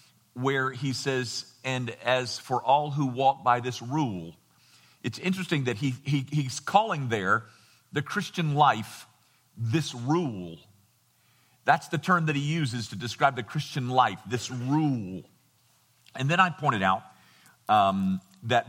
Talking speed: 145 wpm